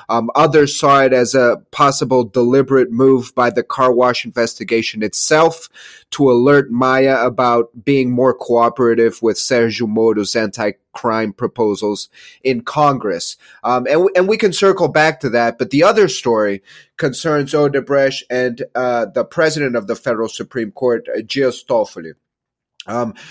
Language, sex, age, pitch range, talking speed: English, male, 30-49, 120-145 Hz, 140 wpm